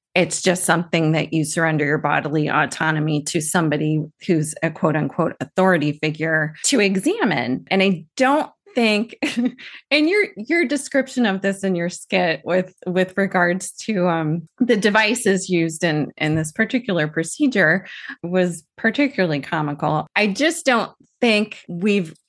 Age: 30-49